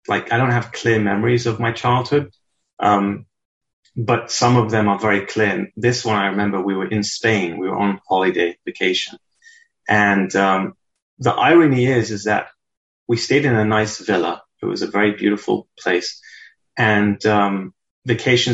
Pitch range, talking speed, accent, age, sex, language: 105-140 Hz, 170 wpm, British, 30-49, male, English